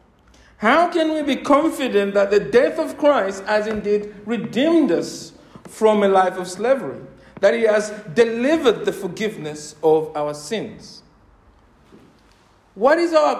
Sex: male